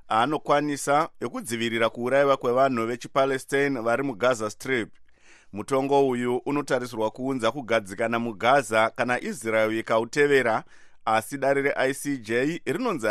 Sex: male